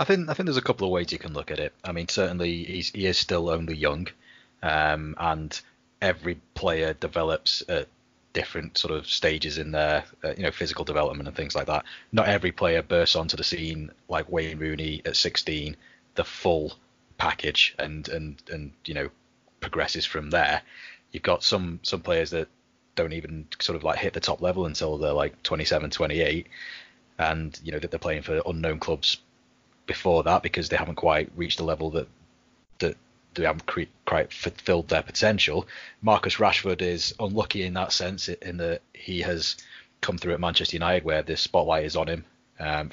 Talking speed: 190 wpm